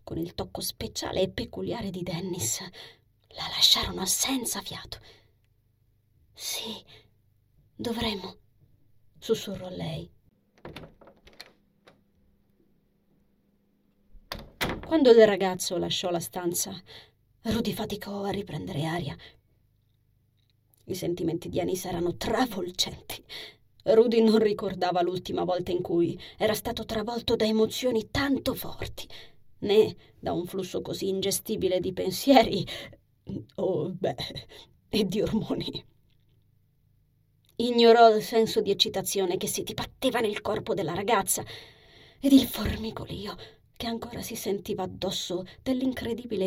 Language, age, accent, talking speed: Italian, 30-49, native, 105 wpm